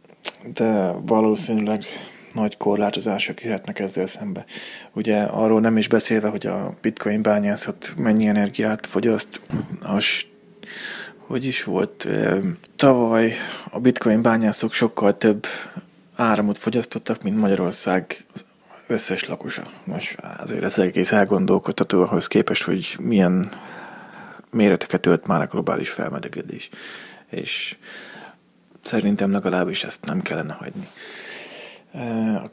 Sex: male